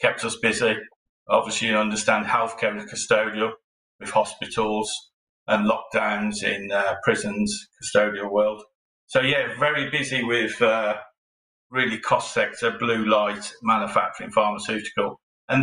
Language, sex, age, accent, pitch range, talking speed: English, male, 40-59, British, 105-130 Hz, 125 wpm